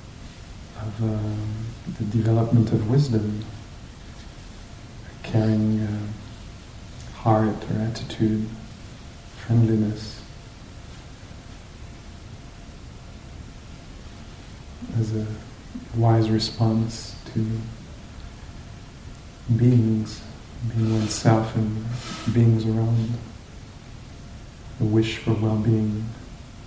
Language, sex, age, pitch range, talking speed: English, male, 40-59, 110-115 Hz, 65 wpm